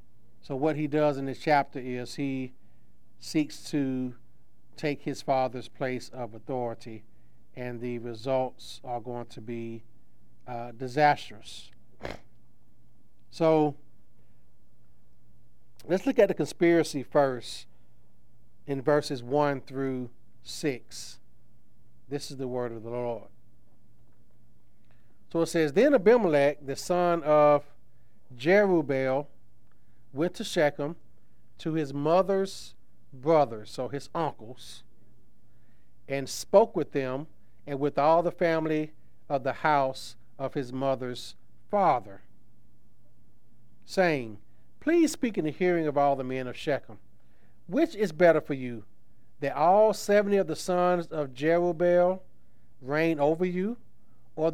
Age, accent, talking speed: 50-69, American, 120 wpm